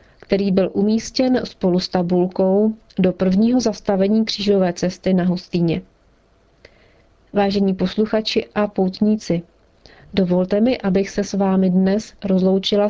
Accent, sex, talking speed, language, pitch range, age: native, female, 115 wpm, Czech, 185-210 Hz, 40-59